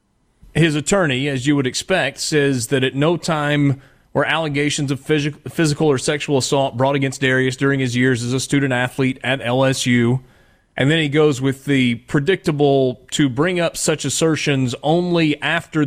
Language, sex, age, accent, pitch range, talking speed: English, male, 30-49, American, 130-150 Hz, 170 wpm